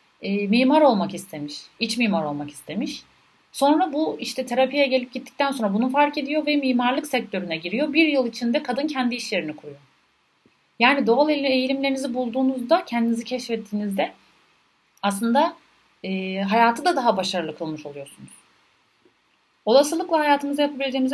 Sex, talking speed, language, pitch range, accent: female, 125 wpm, Turkish, 190-255 Hz, native